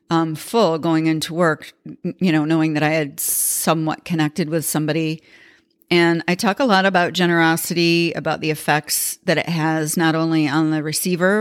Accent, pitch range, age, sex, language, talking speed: American, 155-175 Hz, 40-59, female, English, 175 wpm